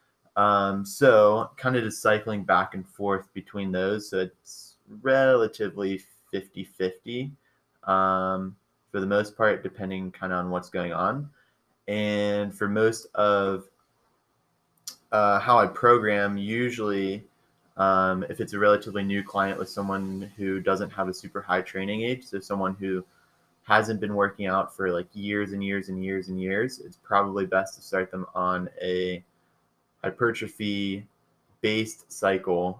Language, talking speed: English, 145 wpm